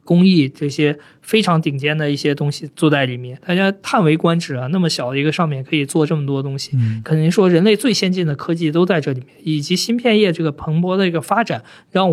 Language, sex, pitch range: Chinese, male, 140-175 Hz